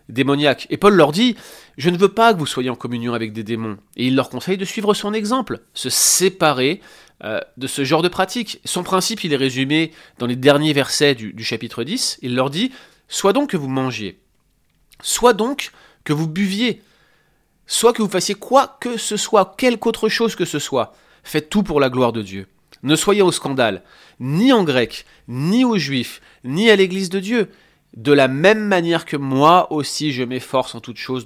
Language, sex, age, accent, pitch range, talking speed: French, male, 30-49, French, 120-180 Hz, 215 wpm